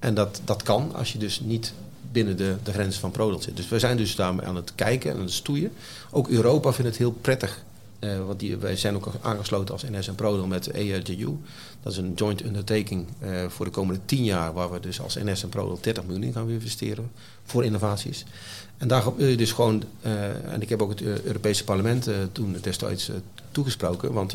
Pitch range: 95-120 Hz